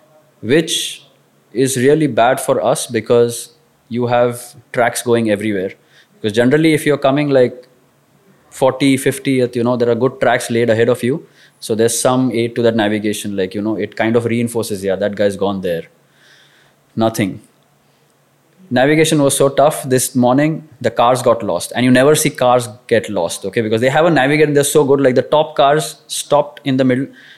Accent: Indian